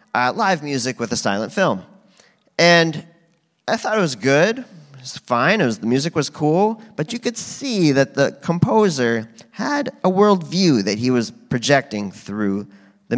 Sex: male